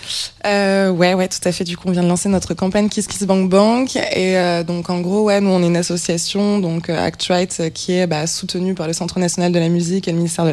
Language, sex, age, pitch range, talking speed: French, female, 20-39, 165-190 Hz, 270 wpm